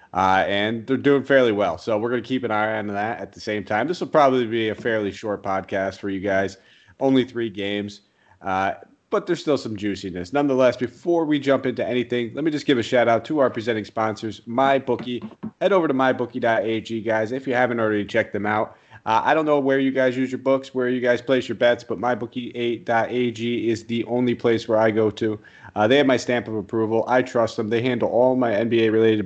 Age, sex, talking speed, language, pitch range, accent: 30-49, male, 225 wpm, English, 110-130 Hz, American